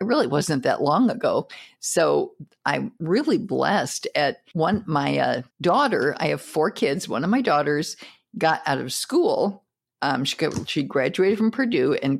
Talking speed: 165 wpm